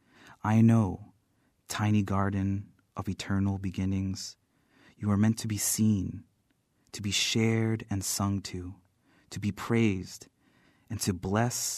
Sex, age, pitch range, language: male, 30-49, 95-110 Hz, English